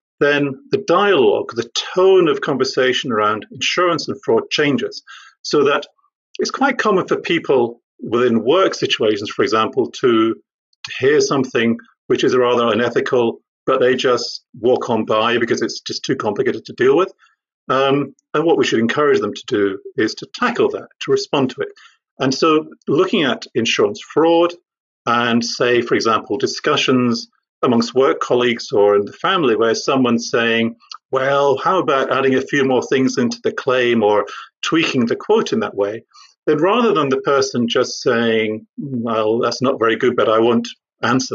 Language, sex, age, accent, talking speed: English, male, 50-69, British, 170 wpm